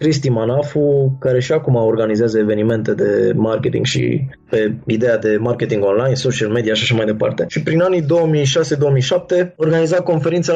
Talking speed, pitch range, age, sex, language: 155 wpm, 130-170 Hz, 20-39, male, Romanian